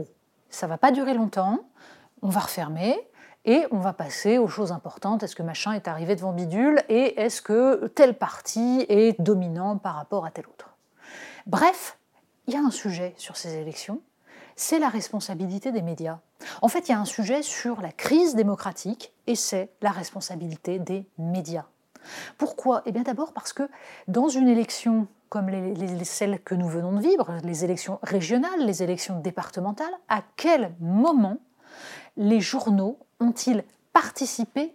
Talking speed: 165 wpm